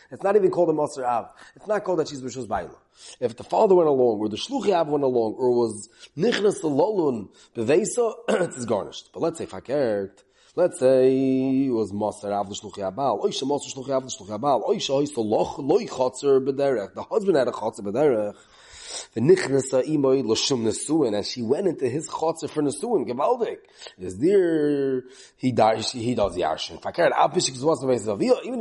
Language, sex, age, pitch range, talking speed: English, male, 30-49, 130-190 Hz, 155 wpm